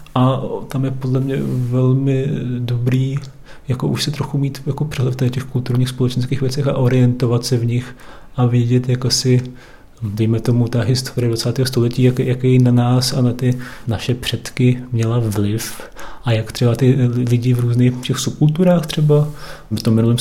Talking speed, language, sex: 170 wpm, Czech, male